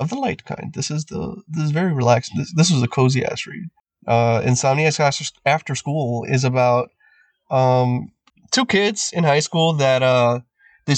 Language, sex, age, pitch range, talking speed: English, male, 20-39, 120-160 Hz, 175 wpm